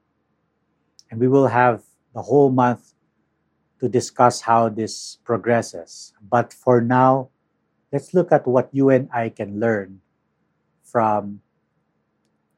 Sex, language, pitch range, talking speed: male, English, 105-130 Hz, 120 wpm